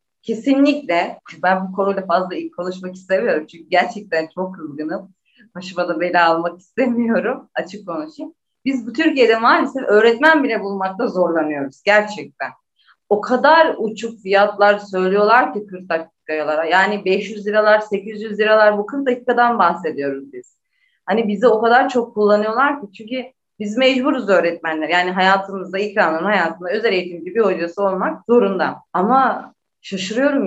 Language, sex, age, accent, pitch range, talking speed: Turkish, female, 30-49, native, 175-245 Hz, 130 wpm